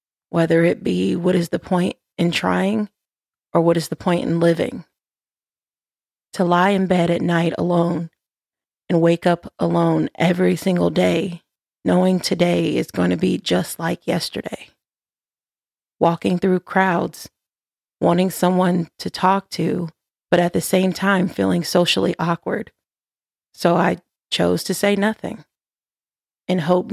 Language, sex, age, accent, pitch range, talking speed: English, female, 30-49, American, 170-185 Hz, 140 wpm